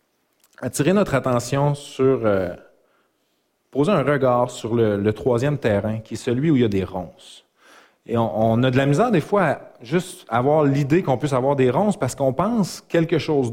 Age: 30-49